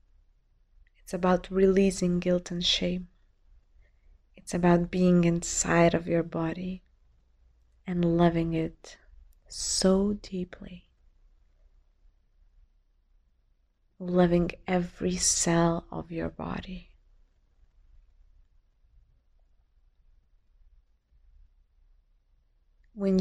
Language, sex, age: English, female, 20-39